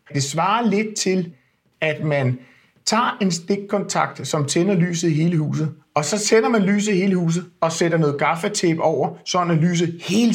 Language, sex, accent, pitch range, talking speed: Danish, male, native, 145-200 Hz, 185 wpm